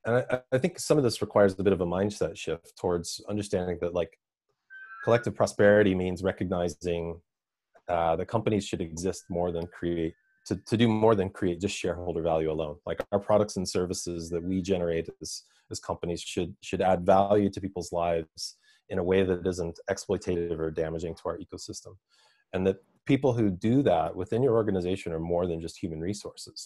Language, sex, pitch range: English, male, 85-105 Hz